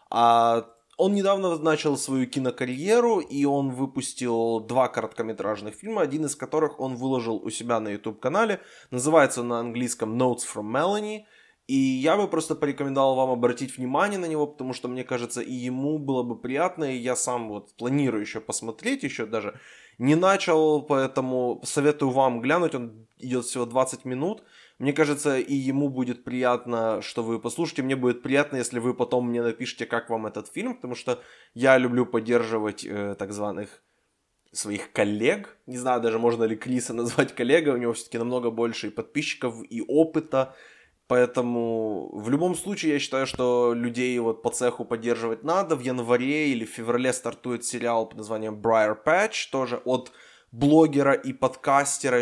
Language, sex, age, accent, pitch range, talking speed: Ukrainian, male, 20-39, native, 120-140 Hz, 165 wpm